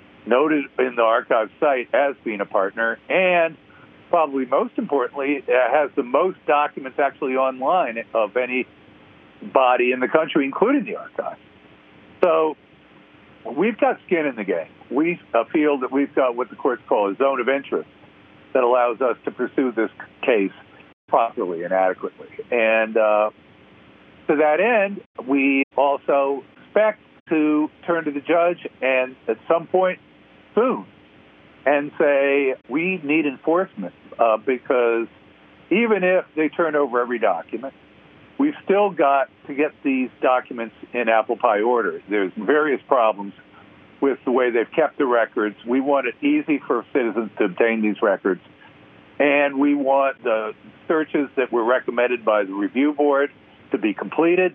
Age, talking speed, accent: 60-79, 150 wpm, American